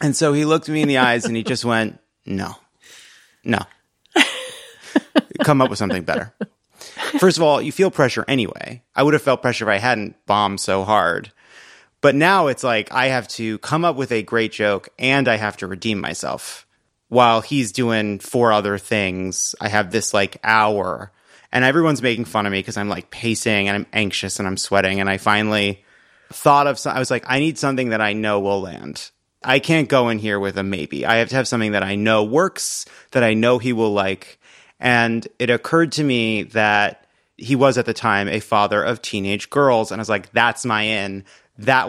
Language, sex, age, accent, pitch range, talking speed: English, male, 30-49, American, 105-130 Hz, 210 wpm